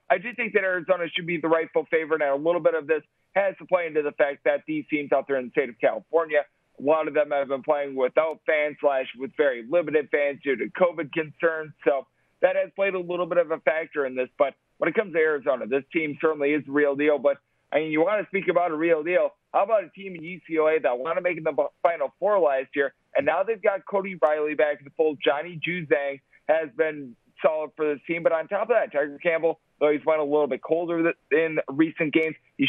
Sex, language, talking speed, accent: male, English, 250 wpm, American